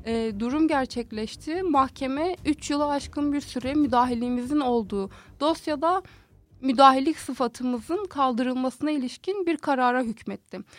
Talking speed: 105 wpm